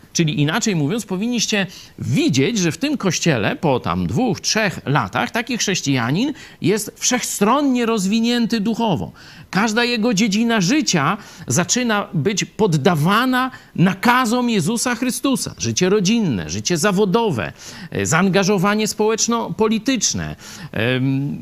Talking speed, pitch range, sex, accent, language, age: 105 wpm, 145-220 Hz, male, native, Polish, 50-69